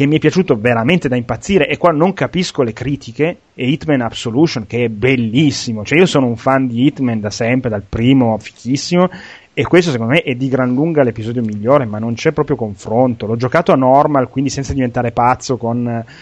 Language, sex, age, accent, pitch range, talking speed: Italian, male, 30-49, native, 115-150 Hz, 205 wpm